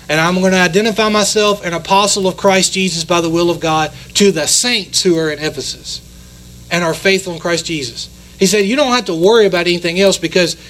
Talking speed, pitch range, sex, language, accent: 225 wpm, 160-195 Hz, male, English, American